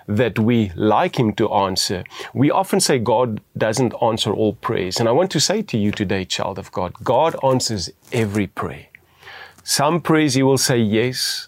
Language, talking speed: English, 185 wpm